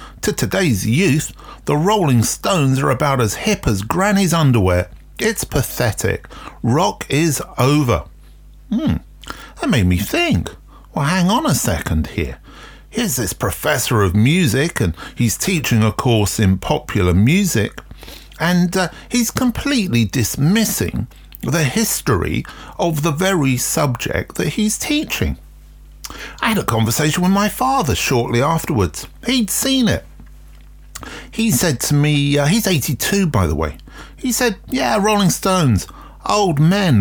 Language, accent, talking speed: English, British, 140 wpm